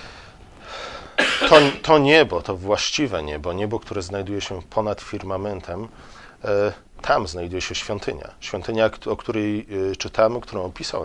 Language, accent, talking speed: Polish, native, 120 wpm